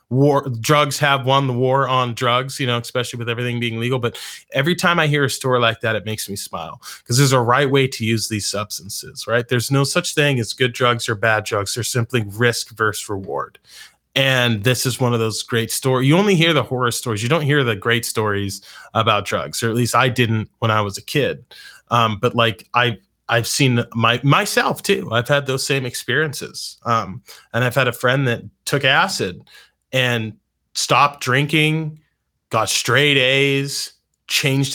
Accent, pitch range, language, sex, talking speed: American, 115-140 Hz, English, male, 200 wpm